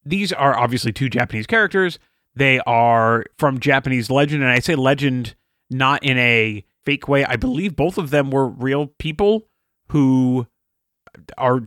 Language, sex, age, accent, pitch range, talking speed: English, male, 30-49, American, 115-140 Hz, 155 wpm